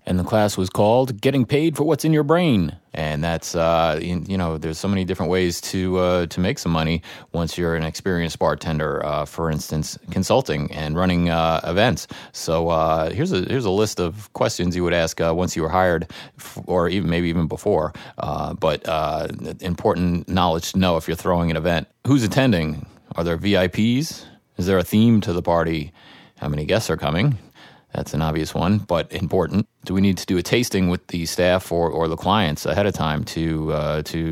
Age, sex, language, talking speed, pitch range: 30-49, male, English, 210 wpm, 80-100 Hz